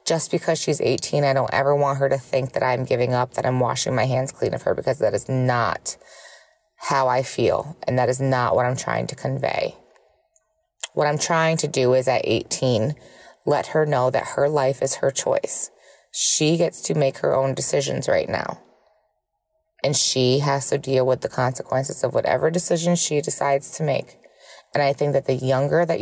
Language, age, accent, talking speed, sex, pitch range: English, 20-39, American, 200 wpm, female, 130-160 Hz